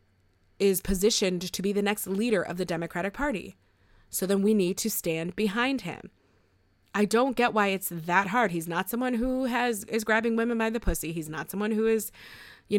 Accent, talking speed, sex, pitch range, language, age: American, 200 wpm, female, 170-235 Hz, English, 20-39